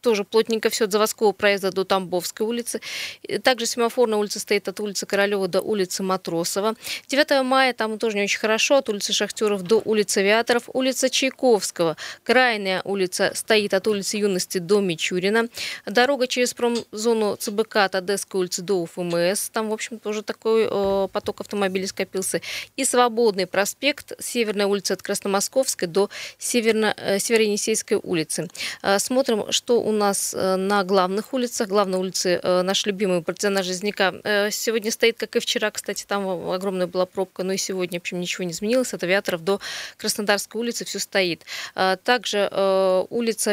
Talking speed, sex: 155 wpm, female